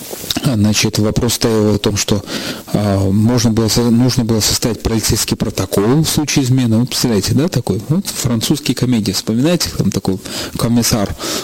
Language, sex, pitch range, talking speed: Russian, male, 110-140 Hz, 140 wpm